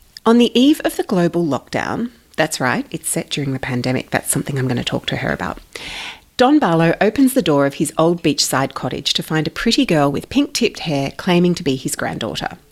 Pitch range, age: 145-185 Hz, 40-59